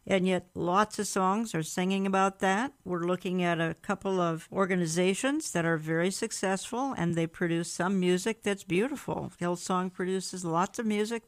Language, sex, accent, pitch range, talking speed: English, female, American, 170-195 Hz, 170 wpm